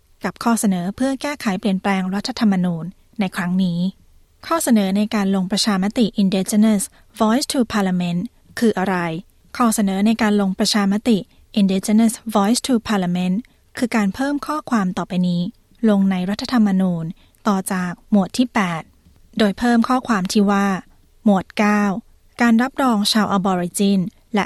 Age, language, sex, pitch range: 20-39, Thai, female, 190-225 Hz